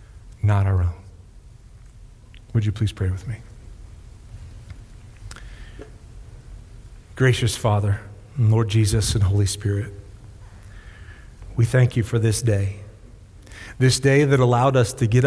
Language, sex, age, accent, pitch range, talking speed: English, male, 40-59, American, 100-120 Hz, 115 wpm